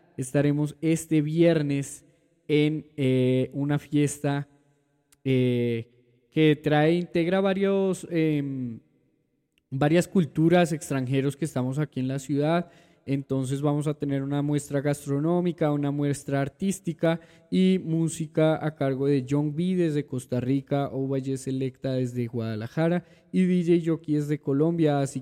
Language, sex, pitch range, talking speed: Spanish, male, 140-165 Hz, 125 wpm